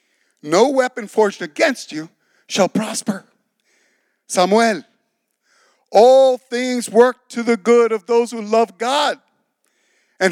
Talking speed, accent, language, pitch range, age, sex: 115 wpm, American, English, 200-255 Hz, 50-69, male